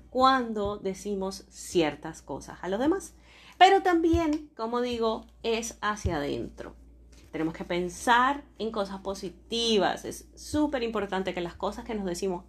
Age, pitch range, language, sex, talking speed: 30-49, 180-235 Hz, Spanish, female, 140 wpm